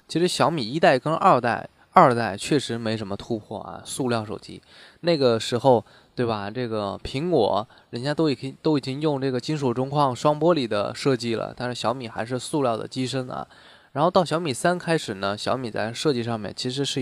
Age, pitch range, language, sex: 20-39, 115-145 Hz, Chinese, male